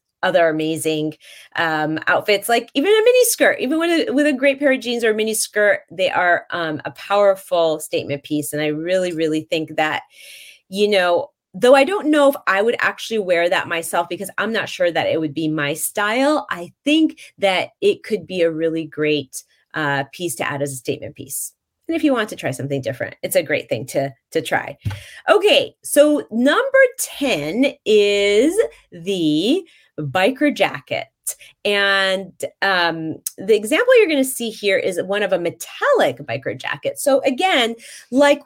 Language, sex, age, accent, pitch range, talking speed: English, female, 30-49, American, 160-260 Hz, 185 wpm